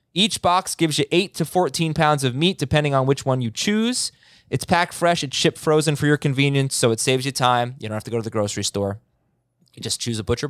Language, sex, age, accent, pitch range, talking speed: English, male, 20-39, American, 125-165 Hz, 250 wpm